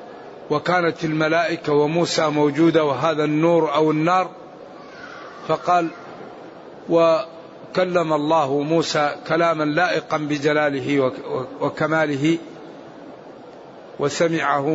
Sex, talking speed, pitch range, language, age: male, 70 wpm, 150-180 Hz, Arabic, 50-69